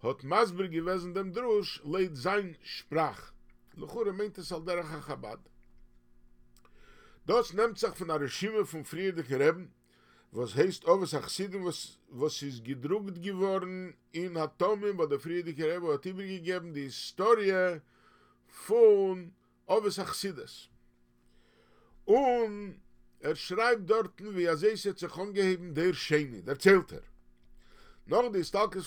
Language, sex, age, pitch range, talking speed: English, male, 50-69, 125-190 Hz, 50 wpm